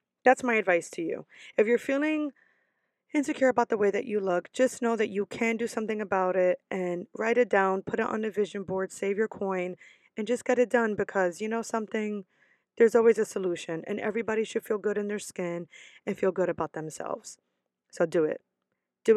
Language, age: English, 20-39